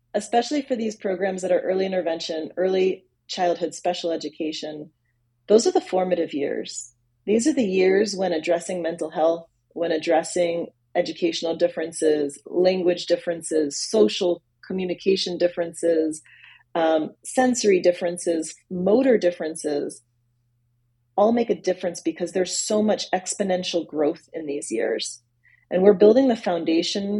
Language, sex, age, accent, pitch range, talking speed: English, female, 30-49, American, 155-195 Hz, 125 wpm